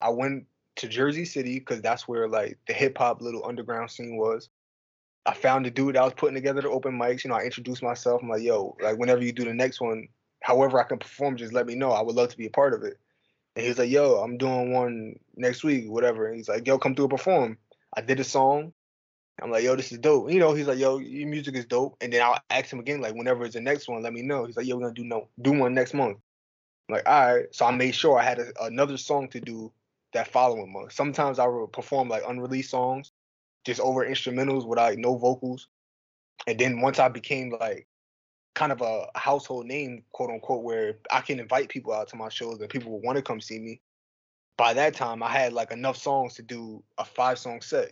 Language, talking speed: English, 250 wpm